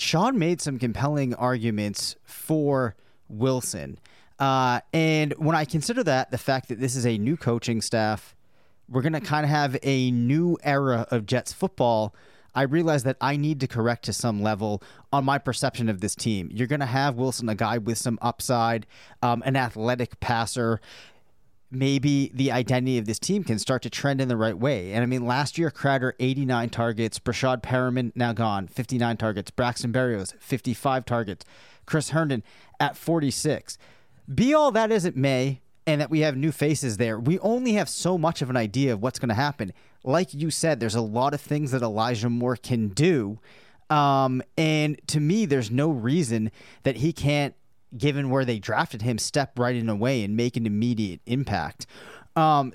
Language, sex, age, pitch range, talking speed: English, male, 30-49, 120-145 Hz, 185 wpm